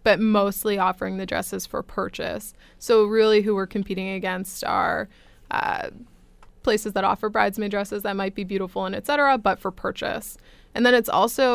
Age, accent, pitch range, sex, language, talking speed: 20-39, American, 200-240 Hz, female, English, 175 wpm